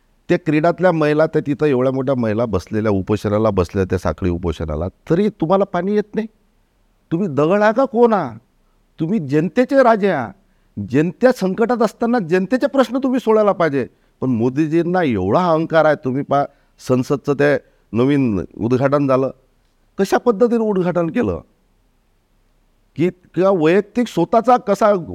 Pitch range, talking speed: 120-185 Hz, 140 wpm